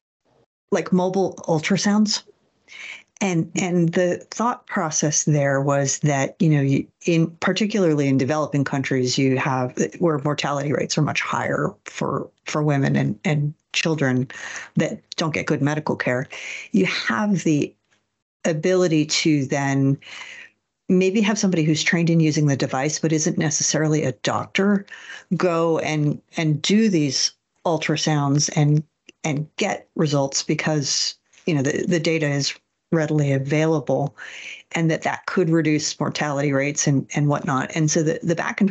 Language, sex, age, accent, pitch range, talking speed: English, female, 50-69, American, 145-175 Hz, 145 wpm